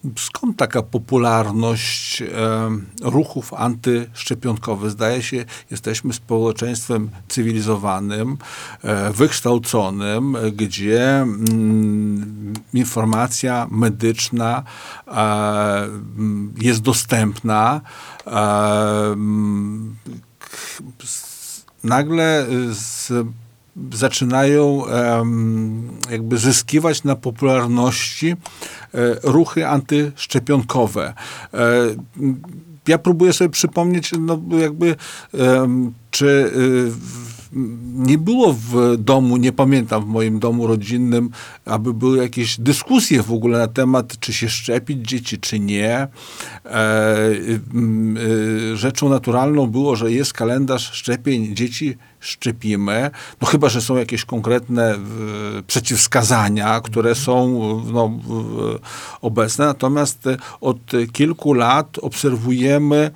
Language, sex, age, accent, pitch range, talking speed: Polish, male, 50-69, native, 110-135 Hz, 80 wpm